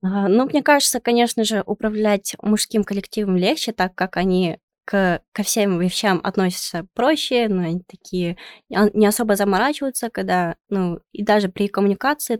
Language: Russian